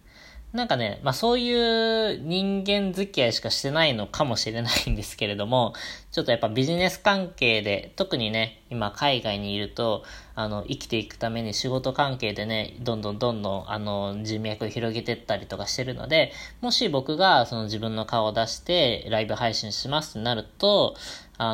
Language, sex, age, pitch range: Japanese, female, 20-39, 105-145 Hz